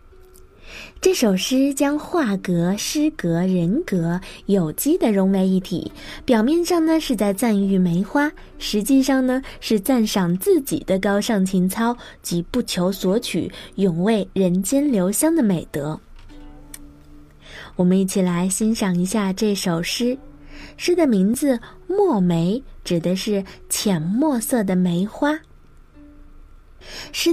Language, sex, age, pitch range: Chinese, female, 20-39, 180-275 Hz